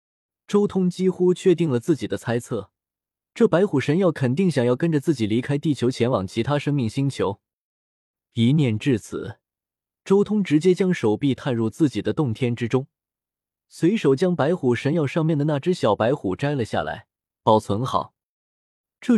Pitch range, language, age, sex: 115-165 Hz, Chinese, 20-39, male